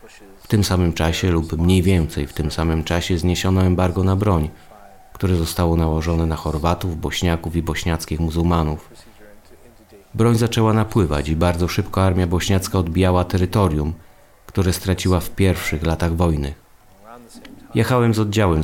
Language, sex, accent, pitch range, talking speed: Polish, male, native, 80-95 Hz, 140 wpm